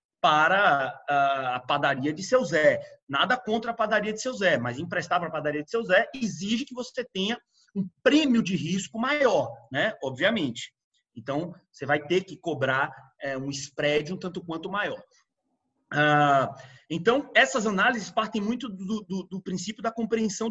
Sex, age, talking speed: male, 30-49, 160 wpm